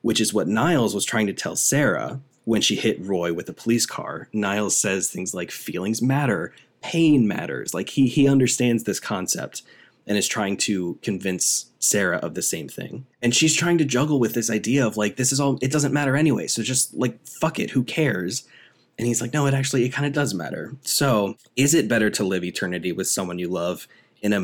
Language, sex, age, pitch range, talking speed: English, male, 20-39, 100-130 Hz, 220 wpm